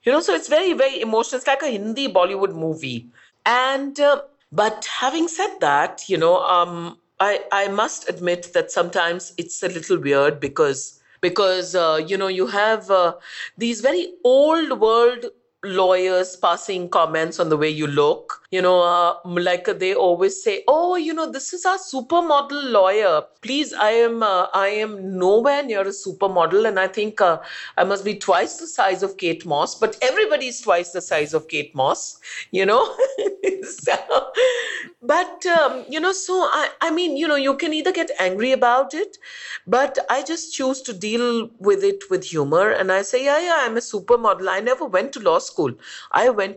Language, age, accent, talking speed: English, 50-69, Indian, 185 wpm